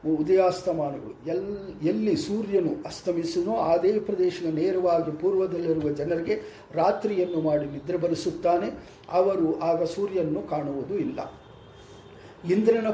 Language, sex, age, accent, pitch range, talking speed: English, male, 50-69, Indian, 160-200 Hz, 95 wpm